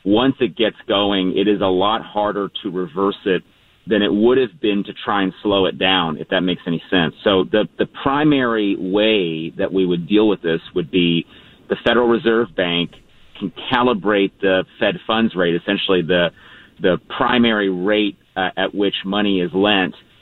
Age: 40-59